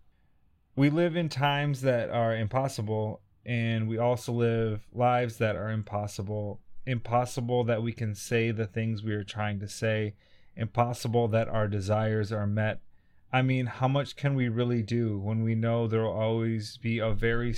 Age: 30-49